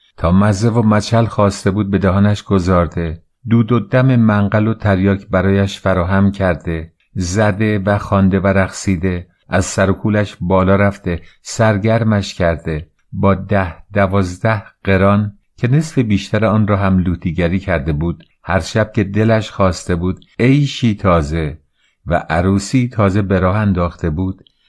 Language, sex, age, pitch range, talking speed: Persian, male, 50-69, 95-110 Hz, 135 wpm